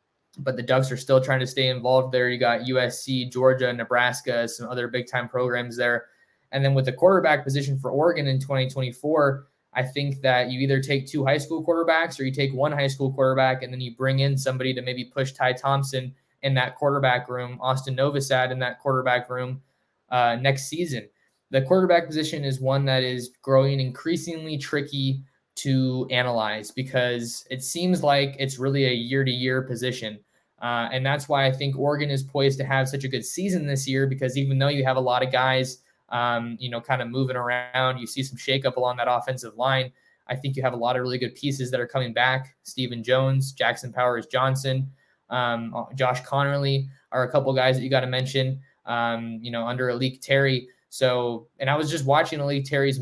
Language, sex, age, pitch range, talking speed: English, male, 20-39, 125-135 Hz, 205 wpm